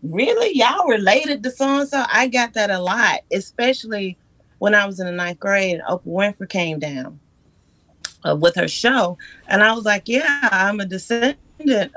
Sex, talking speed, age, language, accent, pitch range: female, 185 wpm, 30-49, English, American, 170-210 Hz